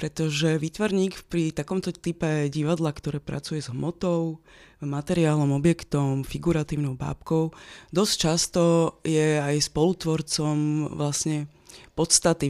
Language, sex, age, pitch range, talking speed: Slovak, female, 20-39, 145-170 Hz, 100 wpm